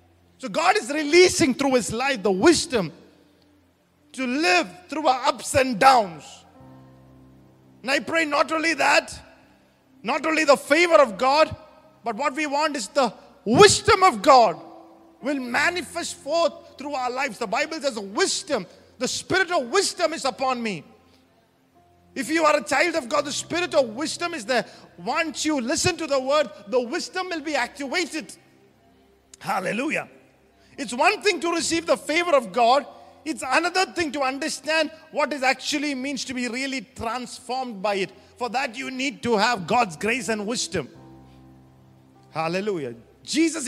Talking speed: 160 wpm